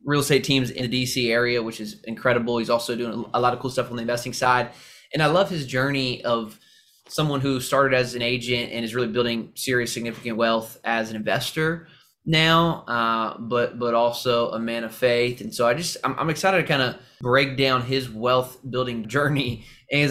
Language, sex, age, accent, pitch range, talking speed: English, male, 20-39, American, 115-130 Hz, 210 wpm